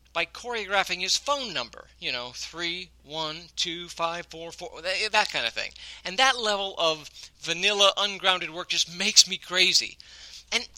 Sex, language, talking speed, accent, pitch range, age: male, English, 145 wpm, American, 150-200 Hz, 50-69